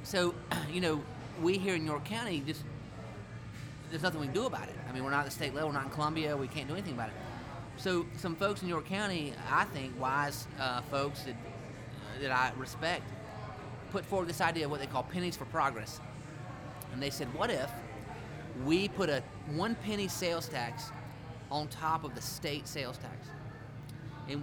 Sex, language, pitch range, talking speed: male, English, 130-165 Hz, 195 wpm